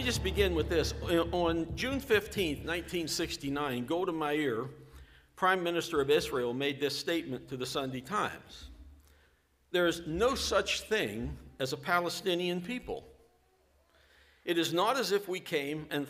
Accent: American